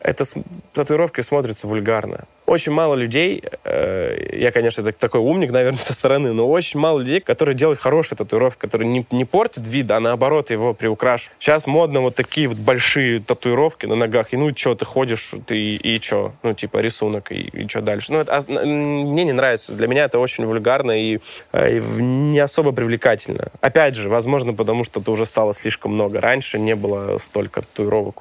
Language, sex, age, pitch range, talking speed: Russian, male, 20-39, 110-145 Hz, 180 wpm